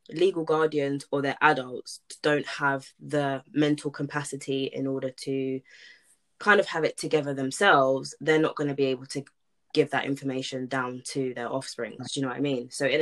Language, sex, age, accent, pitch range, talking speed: English, female, 20-39, British, 135-155 Hz, 190 wpm